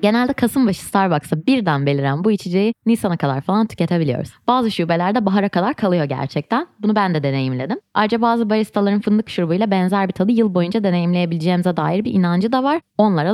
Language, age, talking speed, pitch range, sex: Turkish, 20-39, 170 wpm, 175-230 Hz, female